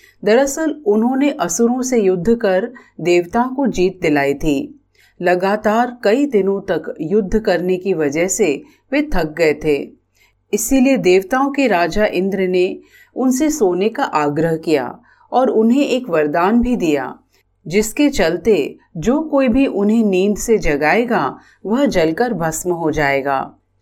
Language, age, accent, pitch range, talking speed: Hindi, 40-59, native, 175-235 Hz, 140 wpm